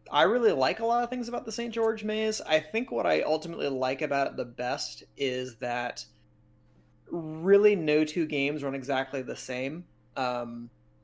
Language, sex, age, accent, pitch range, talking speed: English, male, 30-49, American, 130-155 Hz, 180 wpm